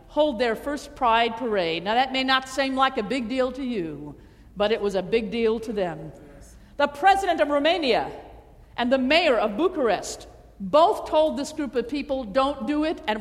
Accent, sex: American, female